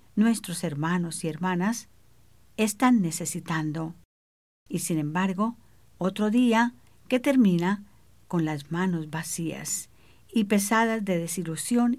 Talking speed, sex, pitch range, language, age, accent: 105 wpm, female, 160-210 Hz, English, 50-69, American